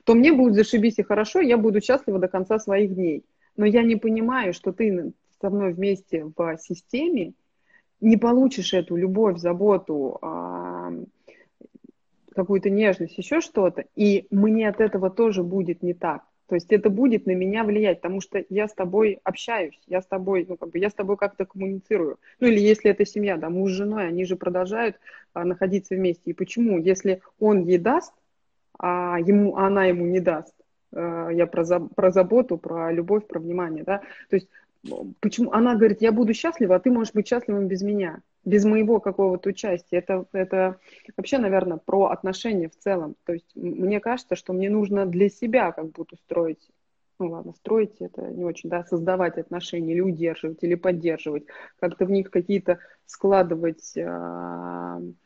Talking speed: 170 wpm